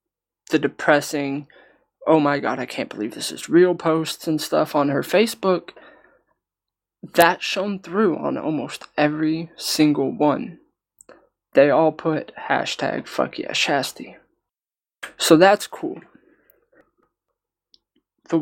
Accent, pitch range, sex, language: American, 145-165 Hz, male, English